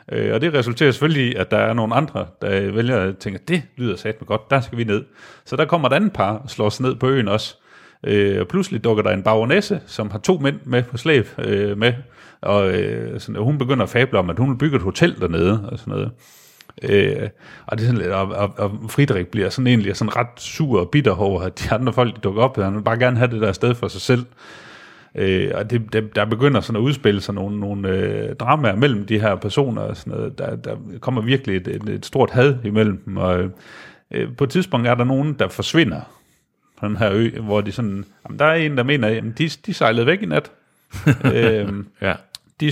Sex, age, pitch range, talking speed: male, 40-59, 105-135 Hz, 230 wpm